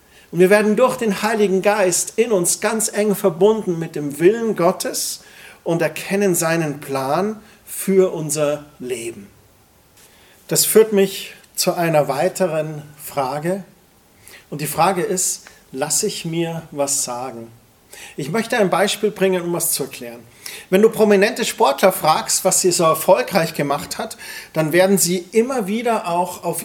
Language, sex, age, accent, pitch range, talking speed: German, male, 40-59, German, 155-205 Hz, 145 wpm